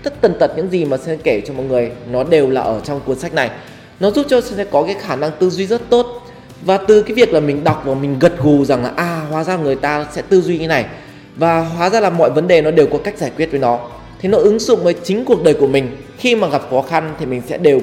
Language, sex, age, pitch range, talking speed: Vietnamese, male, 20-39, 145-195 Hz, 295 wpm